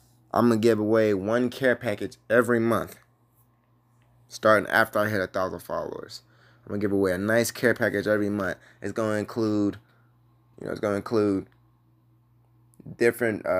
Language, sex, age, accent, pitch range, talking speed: English, male, 20-39, American, 100-120 Hz, 155 wpm